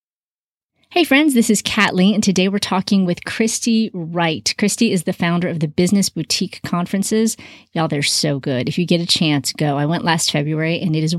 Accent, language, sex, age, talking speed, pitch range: American, English, female, 30-49, 205 wpm, 160-210 Hz